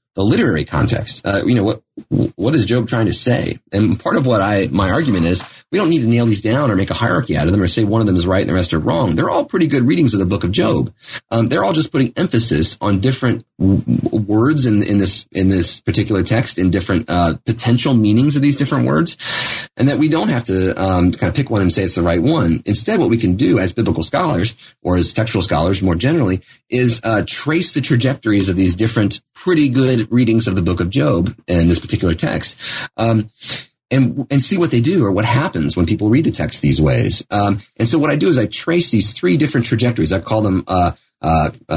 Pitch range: 95-120 Hz